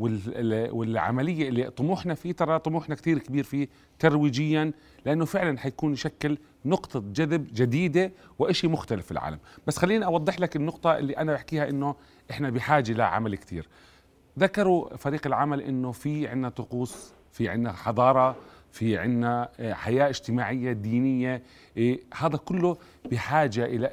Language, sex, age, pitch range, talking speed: Arabic, male, 30-49, 115-155 Hz, 135 wpm